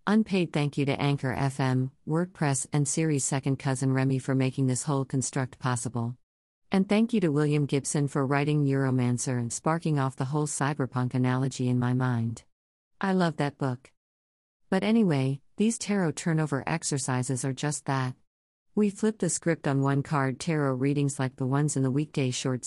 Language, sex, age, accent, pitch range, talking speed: English, female, 50-69, American, 130-150 Hz, 175 wpm